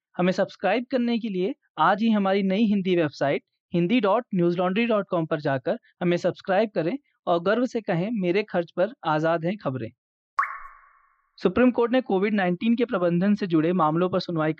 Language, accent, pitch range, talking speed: Hindi, native, 175-220 Hz, 160 wpm